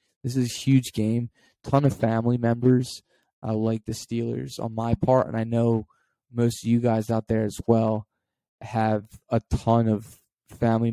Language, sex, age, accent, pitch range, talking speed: English, male, 20-39, American, 110-125 Hz, 180 wpm